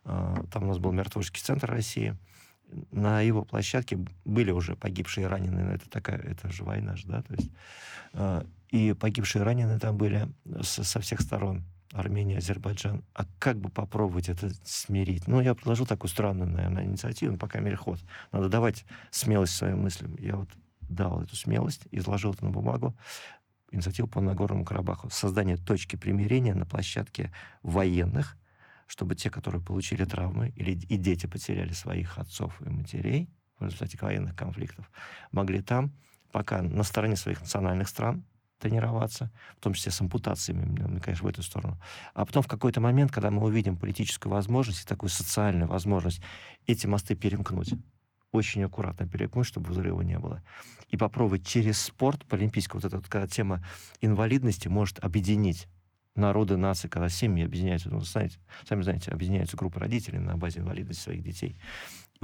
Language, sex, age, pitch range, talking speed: Russian, male, 50-69, 95-115 Hz, 155 wpm